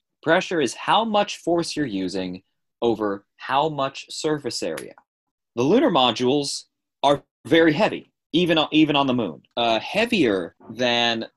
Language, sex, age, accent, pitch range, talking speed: English, male, 30-49, American, 110-150 Hz, 135 wpm